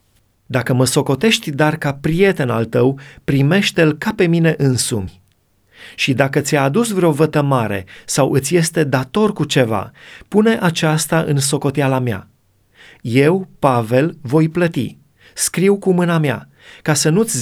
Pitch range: 125-160 Hz